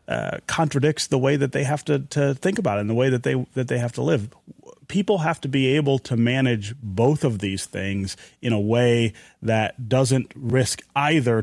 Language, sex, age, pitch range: English, male, 30-49, 110-130 Hz